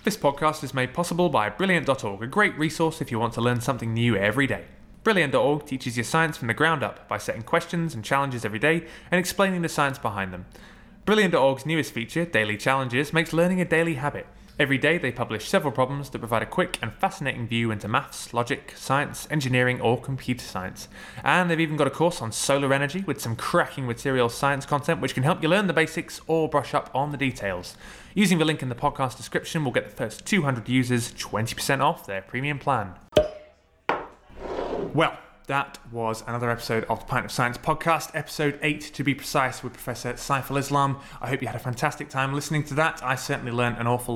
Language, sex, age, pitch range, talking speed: English, male, 20-39, 115-155 Hz, 205 wpm